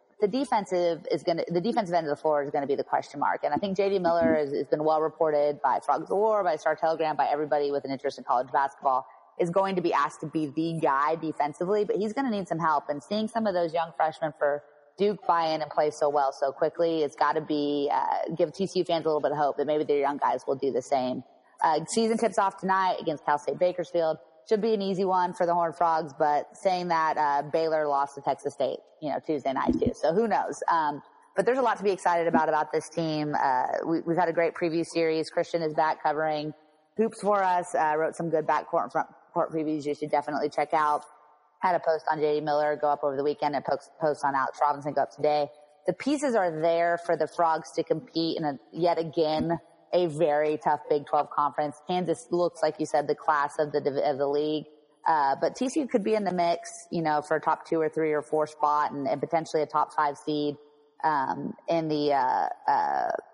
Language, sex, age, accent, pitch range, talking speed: English, female, 20-39, American, 150-175 Hz, 240 wpm